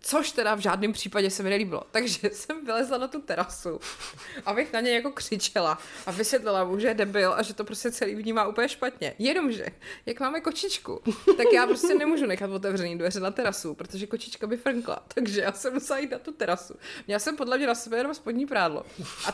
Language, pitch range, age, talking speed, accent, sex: Czech, 215-275 Hz, 20-39, 210 wpm, native, female